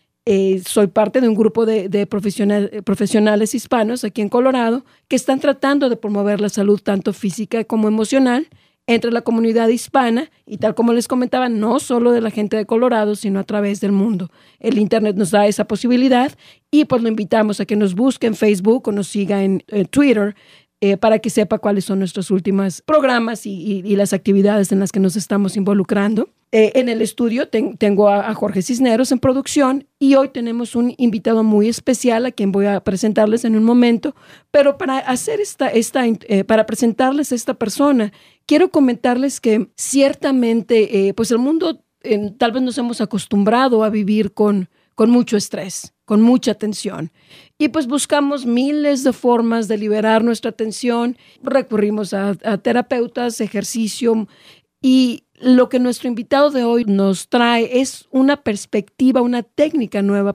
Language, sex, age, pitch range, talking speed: English, female, 40-59, 210-250 Hz, 175 wpm